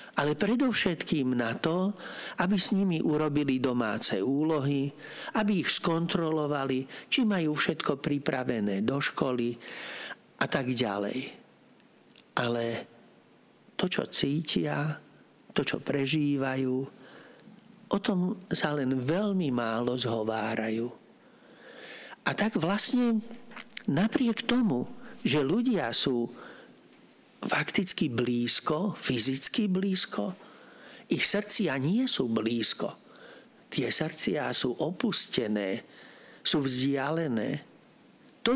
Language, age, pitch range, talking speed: Slovak, 50-69, 130-210 Hz, 95 wpm